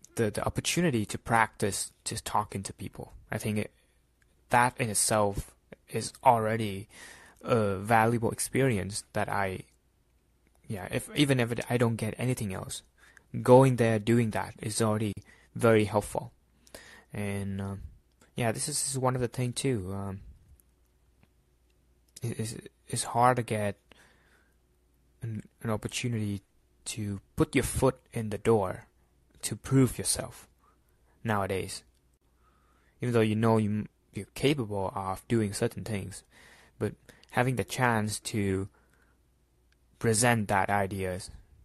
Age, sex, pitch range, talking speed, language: 20-39, male, 95-115 Hz, 135 wpm, English